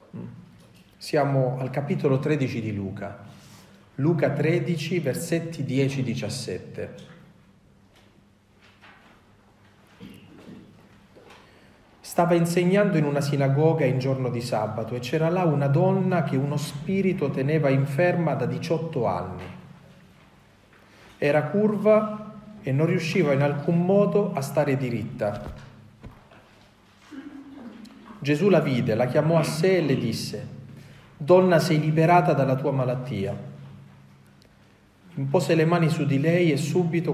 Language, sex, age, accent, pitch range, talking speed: Italian, male, 40-59, native, 115-160 Hz, 110 wpm